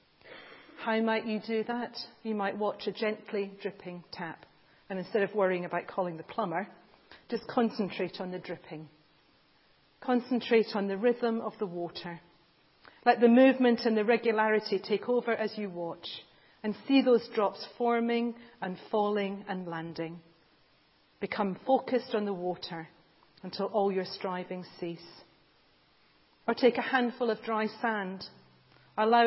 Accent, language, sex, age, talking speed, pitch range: British, English, female, 40-59, 145 wpm, 185-235 Hz